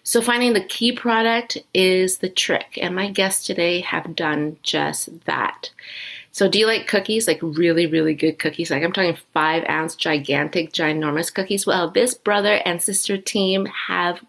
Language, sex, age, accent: English, female, 30-49, American